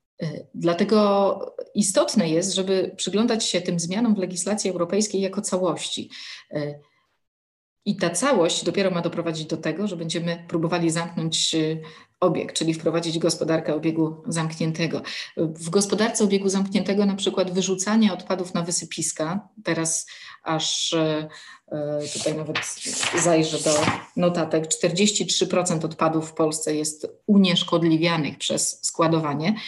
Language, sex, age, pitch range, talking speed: Polish, female, 30-49, 165-205 Hz, 115 wpm